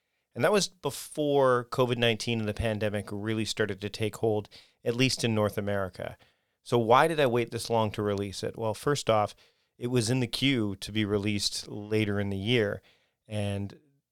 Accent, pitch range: American, 105-125 Hz